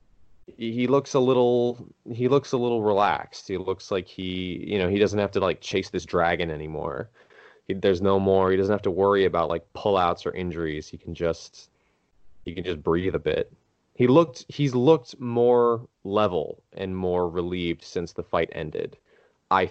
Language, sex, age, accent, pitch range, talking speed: English, male, 20-39, American, 90-125 Hz, 185 wpm